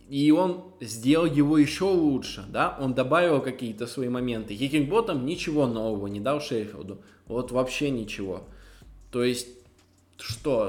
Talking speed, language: 135 wpm, Russian